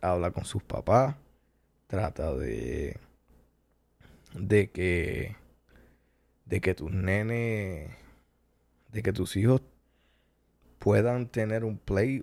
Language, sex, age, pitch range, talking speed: Spanish, male, 20-39, 80-110 Hz, 100 wpm